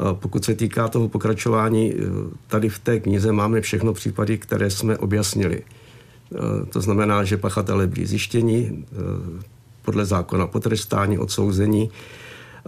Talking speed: 120 wpm